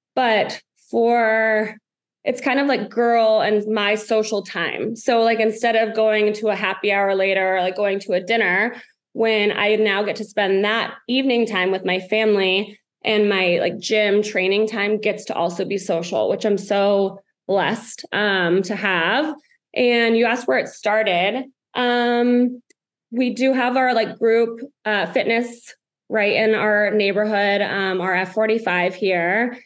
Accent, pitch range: American, 195-230 Hz